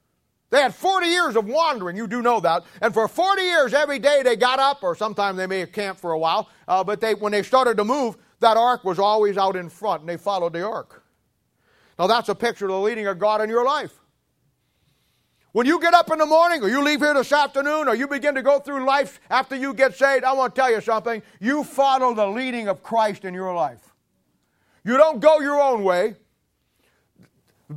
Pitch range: 200-275 Hz